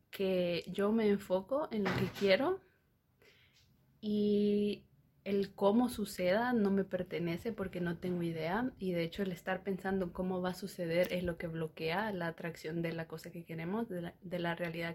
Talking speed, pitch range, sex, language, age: 180 wpm, 170-200 Hz, female, Spanish, 20-39